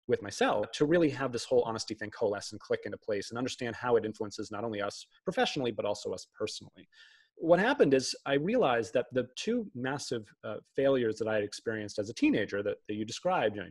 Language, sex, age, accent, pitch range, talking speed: English, male, 30-49, American, 110-175 Hz, 215 wpm